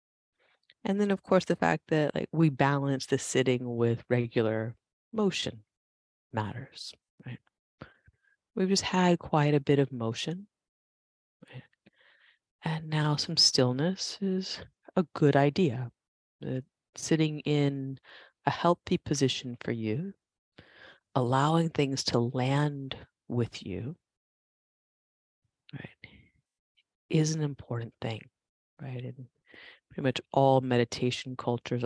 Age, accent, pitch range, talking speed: 30-49, American, 115-145 Hz, 115 wpm